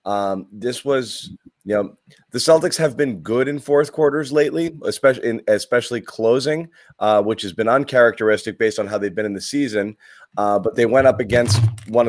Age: 30-49